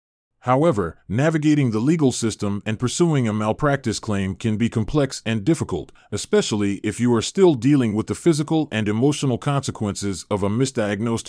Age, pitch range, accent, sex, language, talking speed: 30-49, 105-140 Hz, American, male, English, 160 wpm